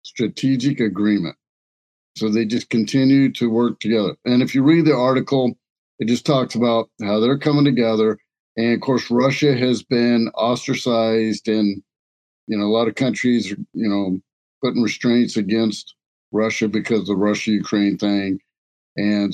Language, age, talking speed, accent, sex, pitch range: English, 50-69, 155 wpm, American, male, 105-130 Hz